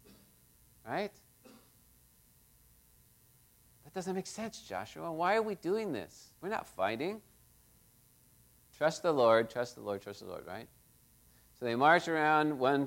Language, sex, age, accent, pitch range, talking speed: English, male, 50-69, American, 115-155 Hz, 135 wpm